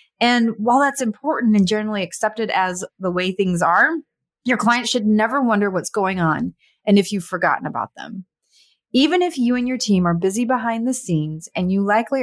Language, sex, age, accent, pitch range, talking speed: English, female, 30-49, American, 180-240 Hz, 195 wpm